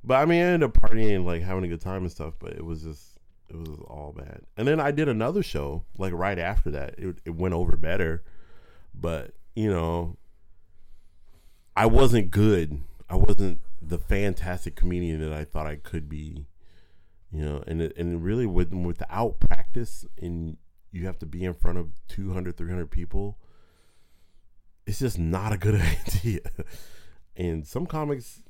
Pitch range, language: 80-95 Hz, English